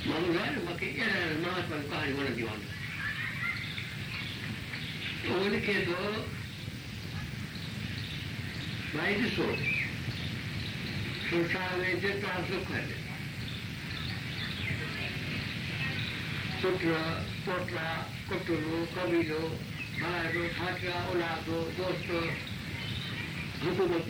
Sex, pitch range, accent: male, 130-180 Hz, native